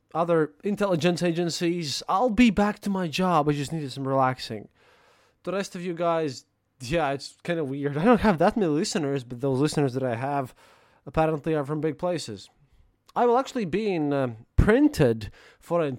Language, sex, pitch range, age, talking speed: English, male, 135-175 Hz, 20-39, 185 wpm